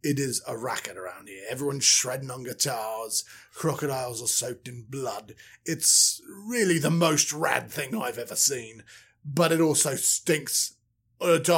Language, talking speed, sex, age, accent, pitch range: English, 150 wpm, male, 30-49, British, 135-205 Hz